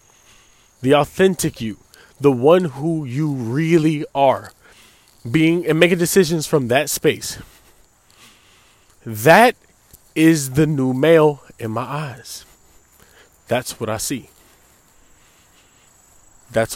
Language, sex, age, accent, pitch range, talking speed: English, male, 20-39, American, 110-160 Hz, 105 wpm